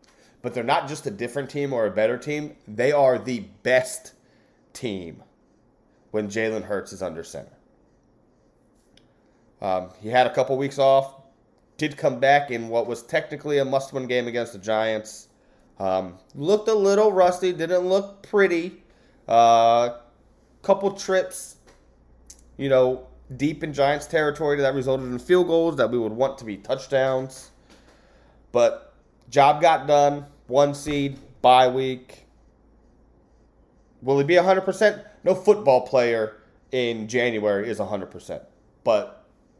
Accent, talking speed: American, 140 wpm